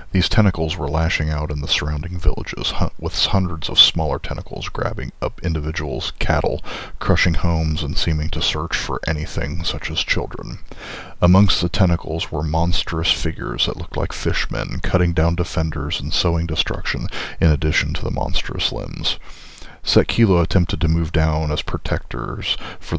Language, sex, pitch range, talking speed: English, male, 80-90 Hz, 155 wpm